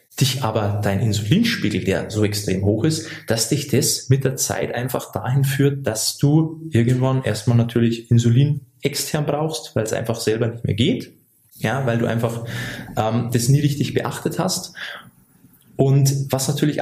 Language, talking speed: German, 165 wpm